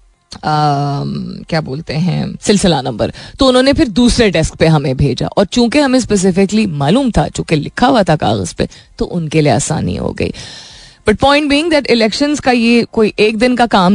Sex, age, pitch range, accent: female, 30-49, 155-195 Hz, native